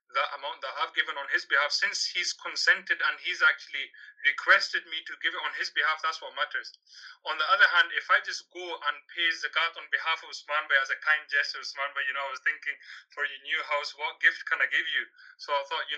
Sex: male